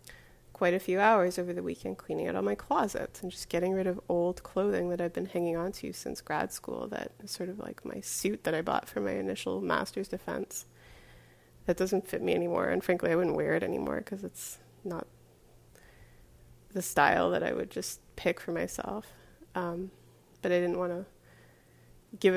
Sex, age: female, 30-49